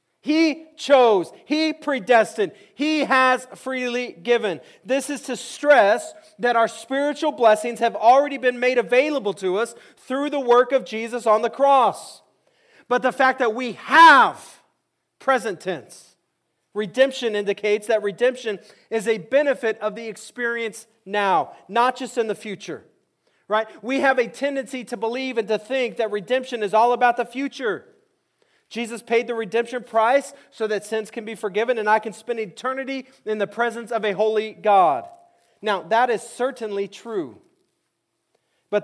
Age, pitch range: 40-59, 205-255 Hz